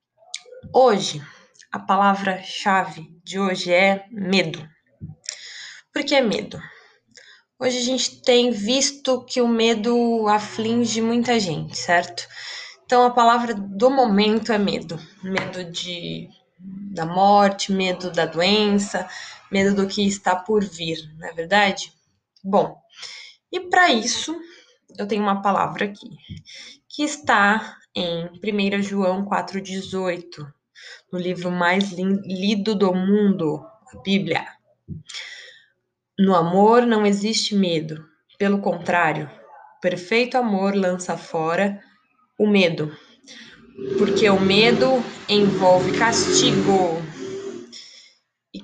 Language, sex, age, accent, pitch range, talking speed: Portuguese, female, 20-39, Brazilian, 180-230 Hz, 110 wpm